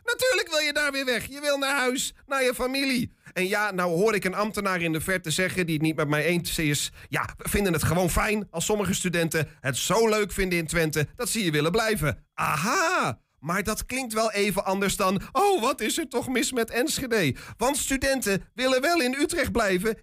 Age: 40-59